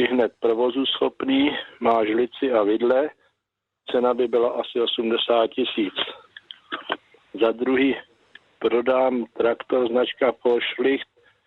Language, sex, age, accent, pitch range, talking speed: Czech, male, 50-69, native, 120-145 Hz, 100 wpm